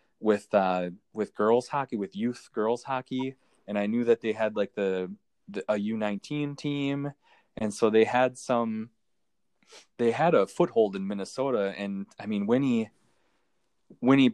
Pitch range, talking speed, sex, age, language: 100-120 Hz, 150 wpm, male, 20-39, English